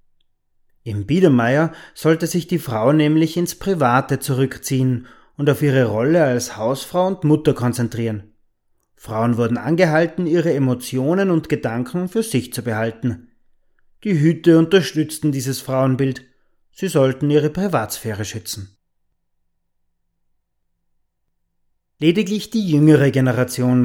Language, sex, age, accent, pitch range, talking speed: German, male, 30-49, German, 115-160 Hz, 110 wpm